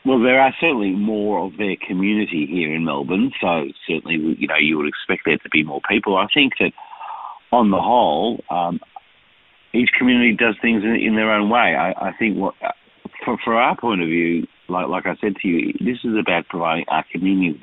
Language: Hebrew